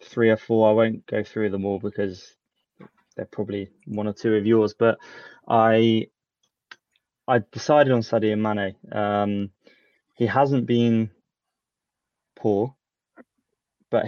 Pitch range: 100-115 Hz